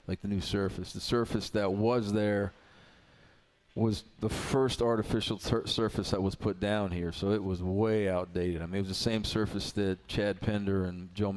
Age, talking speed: 40-59, 195 wpm